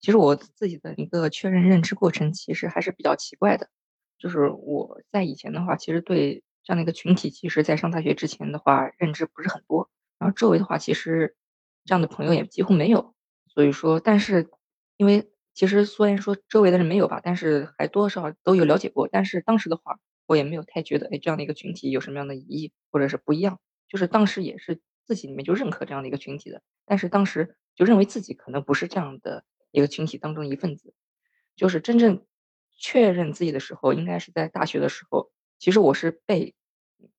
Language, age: Chinese, 20-39